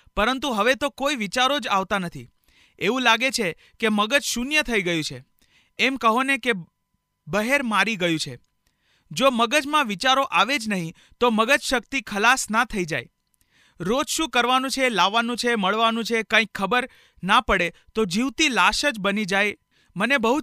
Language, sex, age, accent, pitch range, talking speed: Hindi, male, 40-59, native, 195-255 Hz, 130 wpm